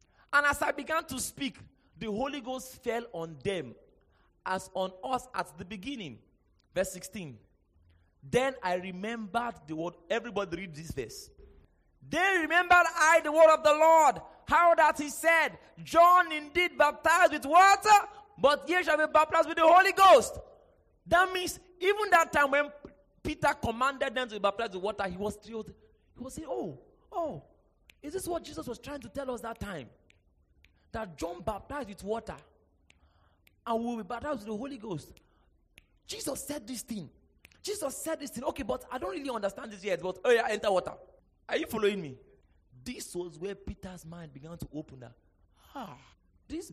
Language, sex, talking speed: English, male, 175 wpm